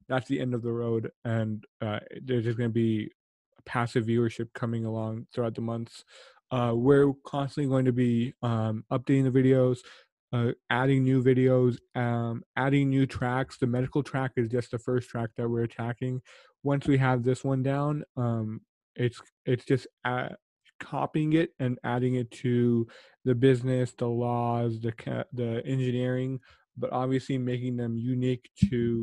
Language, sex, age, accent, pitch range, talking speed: English, male, 20-39, American, 120-135 Hz, 165 wpm